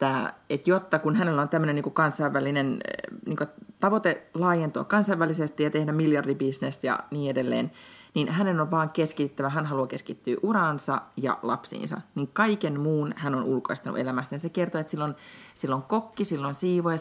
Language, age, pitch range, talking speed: Finnish, 30-49, 130-170 Hz, 160 wpm